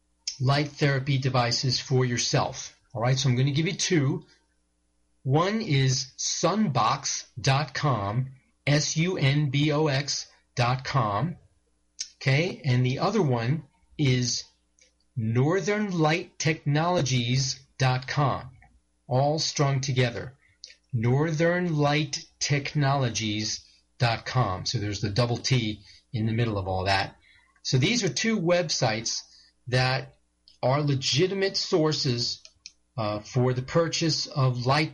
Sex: male